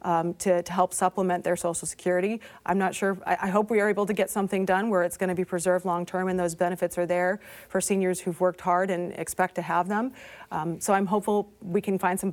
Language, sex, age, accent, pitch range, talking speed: English, female, 30-49, American, 175-195 Hz, 260 wpm